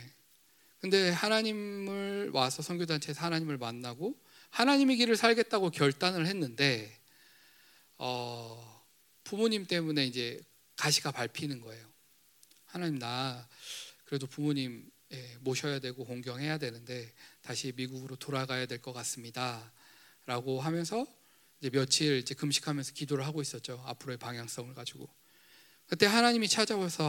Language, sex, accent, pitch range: Korean, male, native, 125-155 Hz